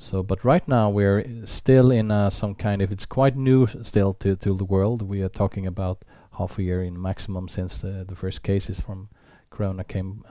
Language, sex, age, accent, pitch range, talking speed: English, male, 40-59, Norwegian, 95-115 Hz, 215 wpm